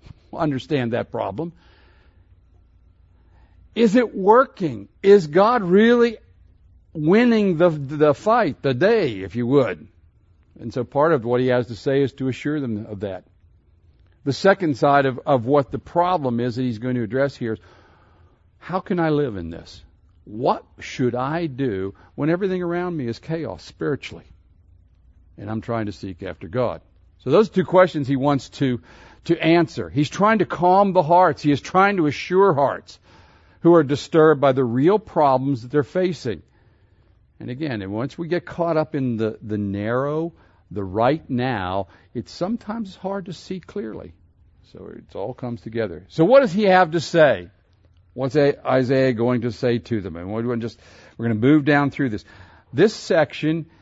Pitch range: 95-160 Hz